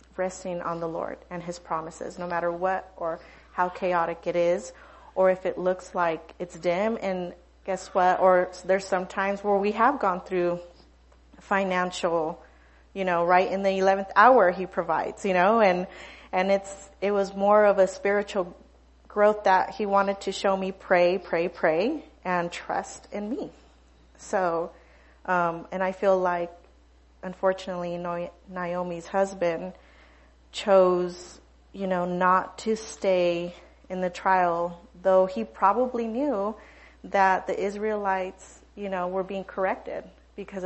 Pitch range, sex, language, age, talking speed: 175-195 Hz, female, English, 30-49, 150 wpm